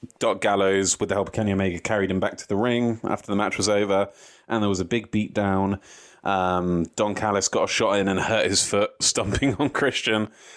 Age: 30-49